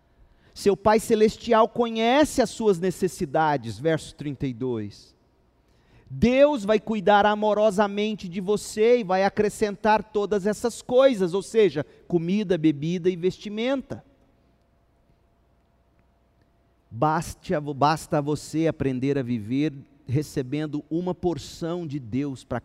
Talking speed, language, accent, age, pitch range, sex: 100 wpm, Portuguese, Brazilian, 40-59, 150-210 Hz, male